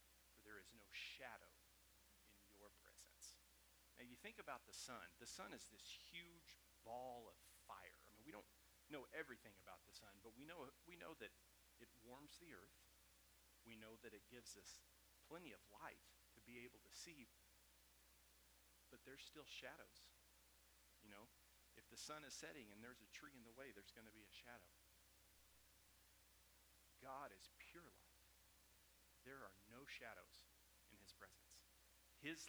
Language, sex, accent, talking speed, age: English, male, American, 155 wpm, 40-59